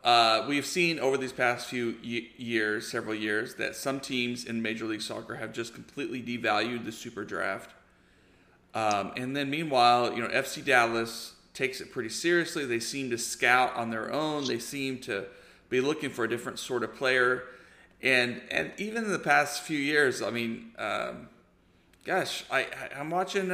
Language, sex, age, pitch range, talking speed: English, male, 40-59, 115-140 Hz, 175 wpm